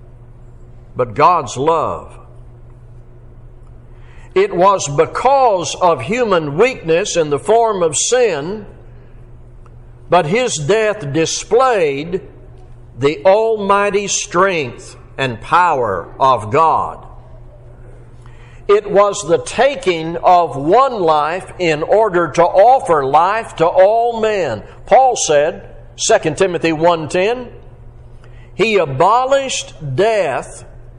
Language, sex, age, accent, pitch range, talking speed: English, male, 60-79, American, 120-170 Hz, 95 wpm